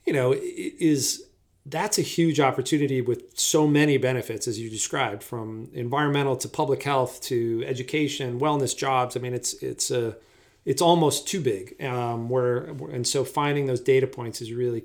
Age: 40-59